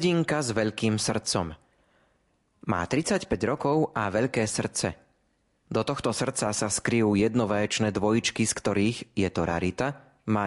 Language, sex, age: Slovak, male, 30-49